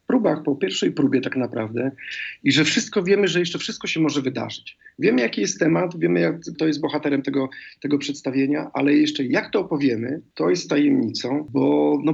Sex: male